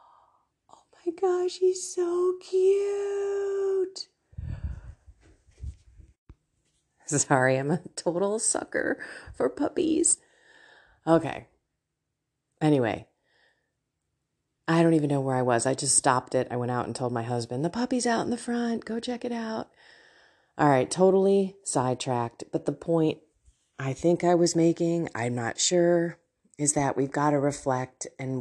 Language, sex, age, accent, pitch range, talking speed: English, female, 30-49, American, 140-210 Hz, 135 wpm